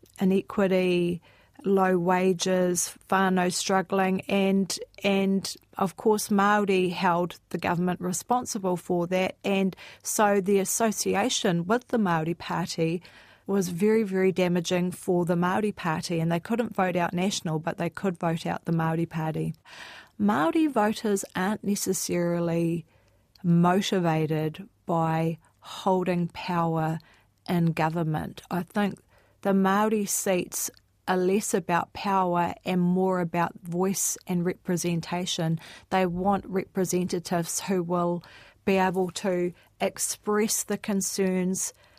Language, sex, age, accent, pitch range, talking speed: English, female, 30-49, Australian, 170-195 Hz, 120 wpm